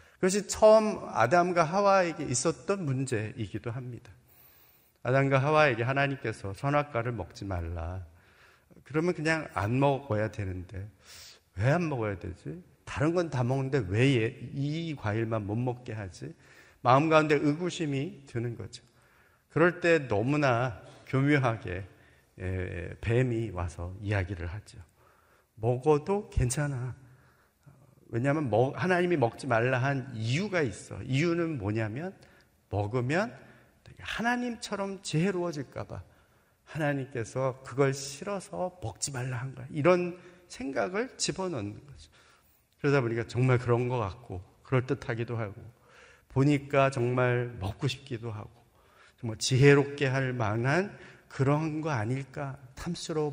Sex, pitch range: male, 115-150 Hz